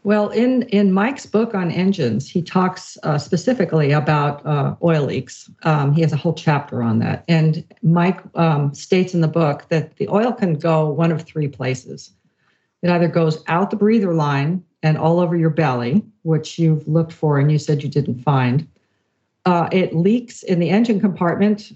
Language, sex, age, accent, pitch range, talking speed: English, female, 50-69, American, 150-185 Hz, 190 wpm